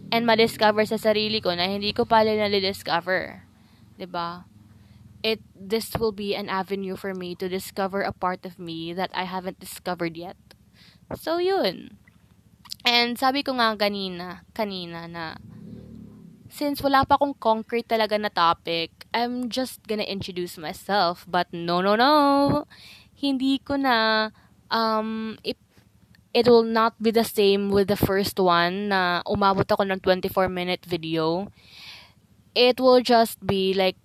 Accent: native